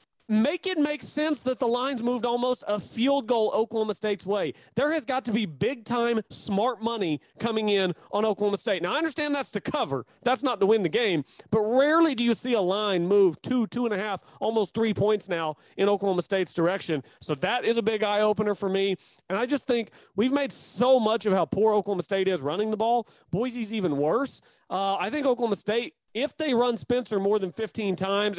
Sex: male